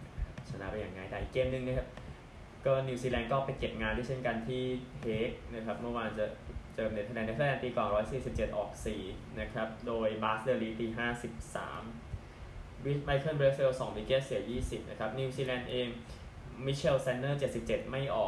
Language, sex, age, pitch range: Thai, male, 20-39, 105-130 Hz